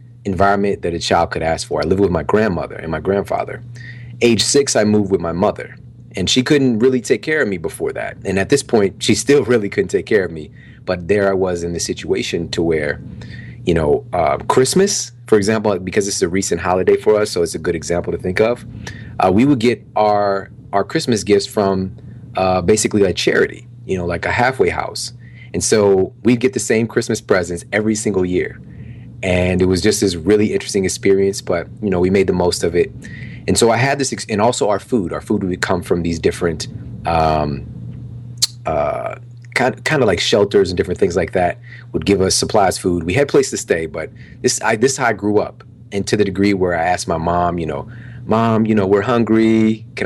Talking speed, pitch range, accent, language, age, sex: 225 wpm, 95-120 Hz, American, English, 30-49, male